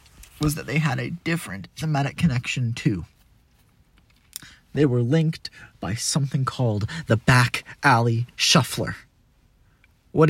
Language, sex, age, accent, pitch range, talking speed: English, male, 30-49, American, 135-180 Hz, 115 wpm